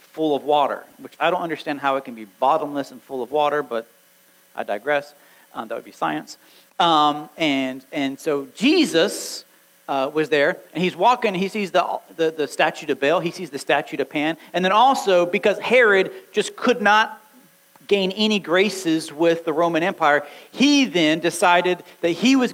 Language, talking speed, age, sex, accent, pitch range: English, 185 wpm, 40-59, male, American, 155-225 Hz